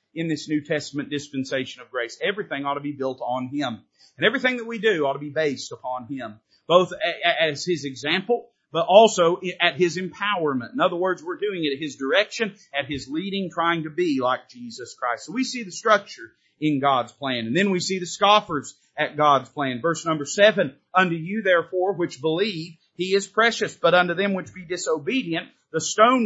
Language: English